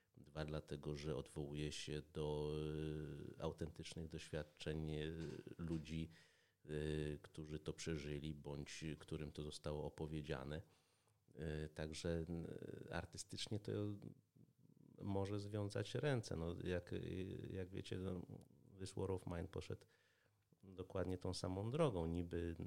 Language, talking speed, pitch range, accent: Polish, 100 wpm, 75-100 Hz, native